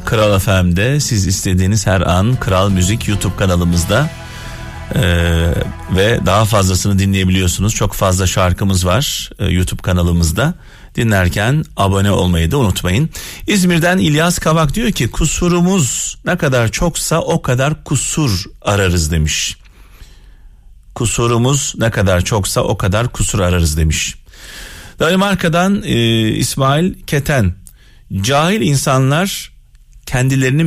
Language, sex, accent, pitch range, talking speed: Turkish, male, native, 95-140 Hz, 110 wpm